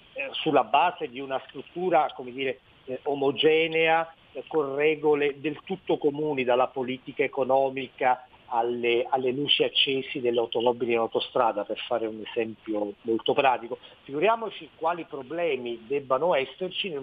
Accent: native